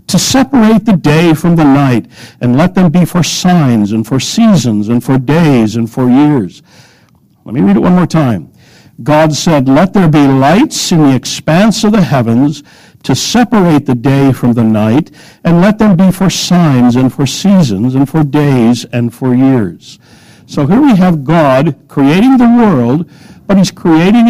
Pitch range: 130-180 Hz